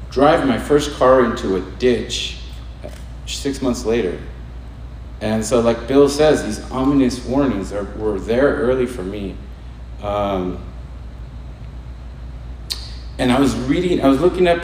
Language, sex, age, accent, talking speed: English, male, 40-59, American, 135 wpm